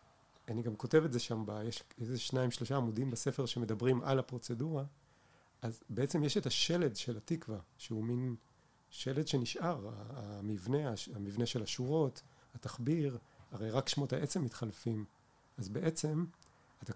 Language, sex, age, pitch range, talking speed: Hebrew, male, 40-59, 115-150 Hz, 140 wpm